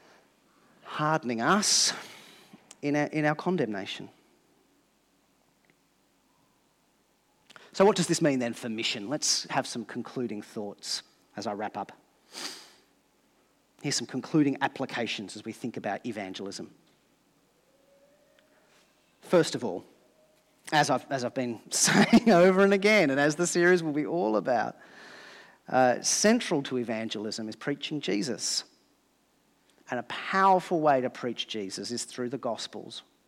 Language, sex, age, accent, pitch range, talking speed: English, male, 40-59, Australian, 120-180 Hz, 130 wpm